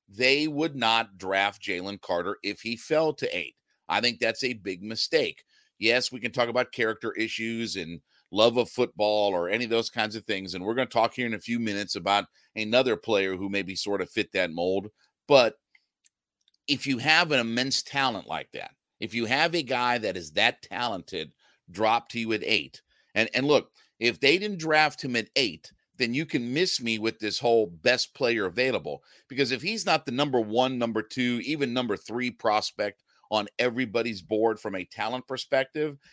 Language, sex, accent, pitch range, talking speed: English, male, American, 105-135 Hz, 200 wpm